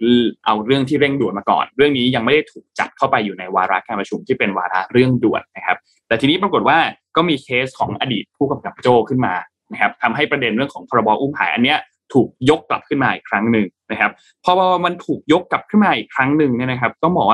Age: 20-39